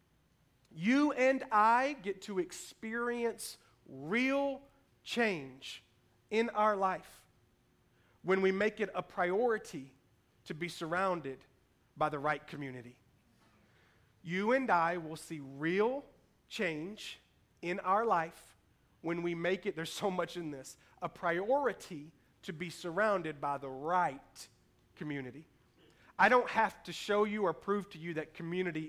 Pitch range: 150-225 Hz